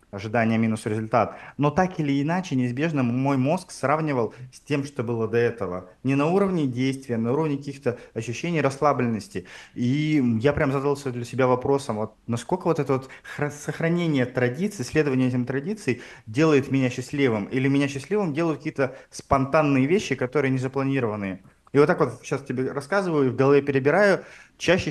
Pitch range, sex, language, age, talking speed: 125-150 Hz, male, Russian, 30-49, 155 wpm